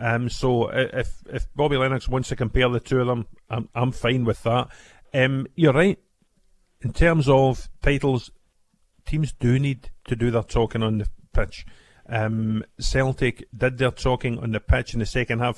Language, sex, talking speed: English, male, 180 wpm